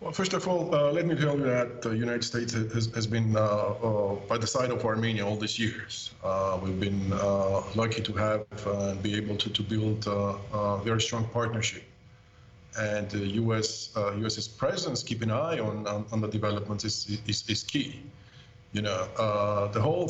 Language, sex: English, male